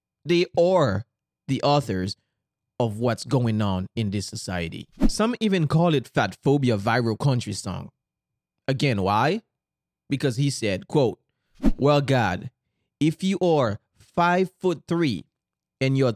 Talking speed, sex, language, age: 135 wpm, male, English, 30-49